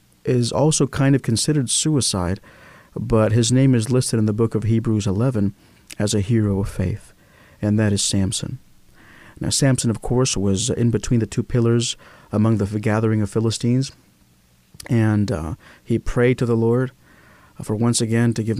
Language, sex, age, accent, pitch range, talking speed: English, male, 50-69, American, 105-125 Hz, 170 wpm